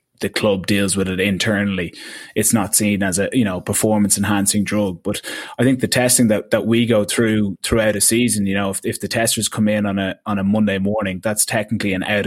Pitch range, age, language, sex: 95-110 Hz, 20-39, English, male